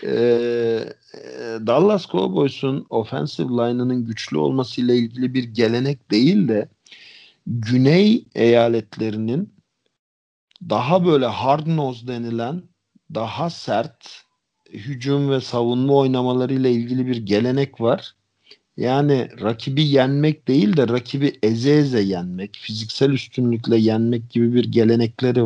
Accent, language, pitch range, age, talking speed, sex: native, Turkish, 115-140 Hz, 50-69, 100 wpm, male